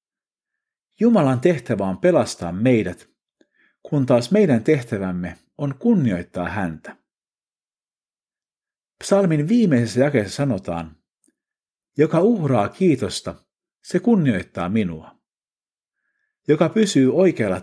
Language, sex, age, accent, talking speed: Finnish, male, 50-69, native, 85 wpm